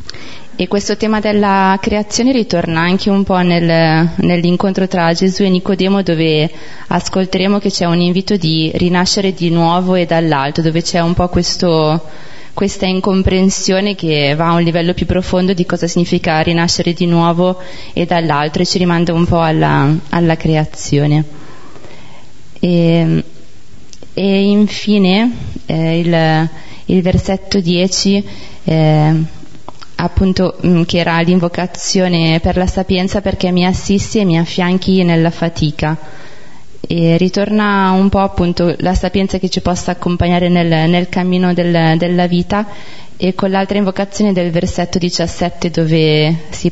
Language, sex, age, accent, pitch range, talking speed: Italian, female, 20-39, native, 165-190 Hz, 135 wpm